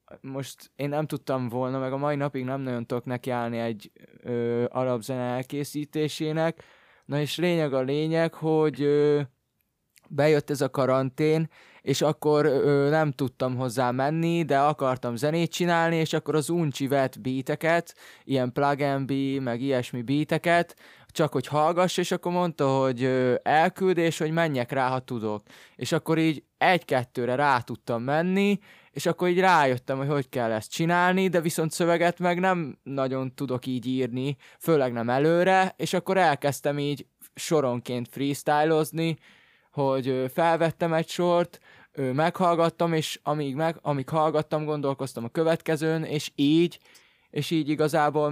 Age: 20-39